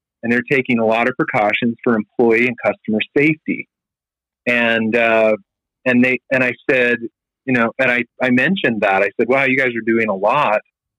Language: English